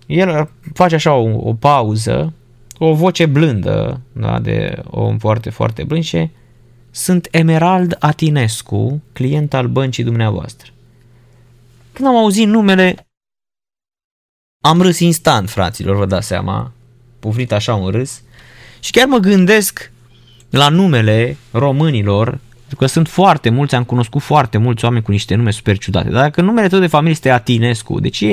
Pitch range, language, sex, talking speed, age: 120-160 Hz, Romanian, male, 150 wpm, 20-39